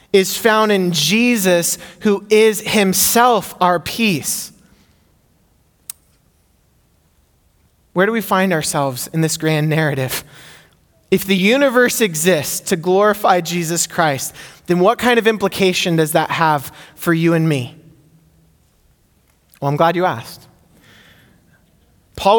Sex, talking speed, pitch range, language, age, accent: male, 120 wpm, 150-200 Hz, English, 20-39, American